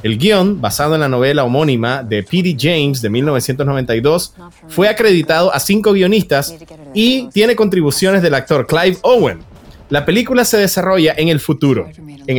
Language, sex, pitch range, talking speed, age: Spanish, male, 130-190 Hz, 155 wpm, 30-49